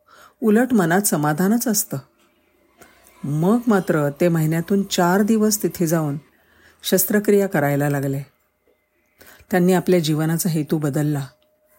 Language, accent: Marathi, native